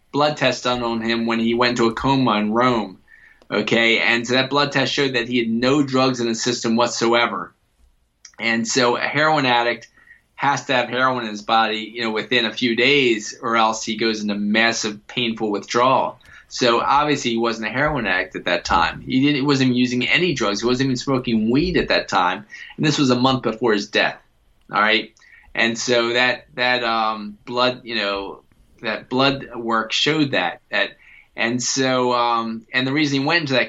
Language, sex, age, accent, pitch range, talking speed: English, male, 20-39, American, 110-130 Hz, 200 wpm